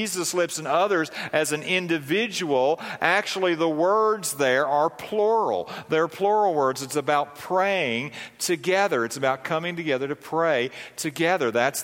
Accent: American